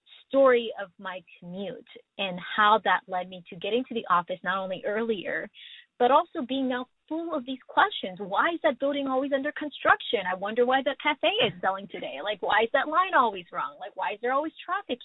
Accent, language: American, English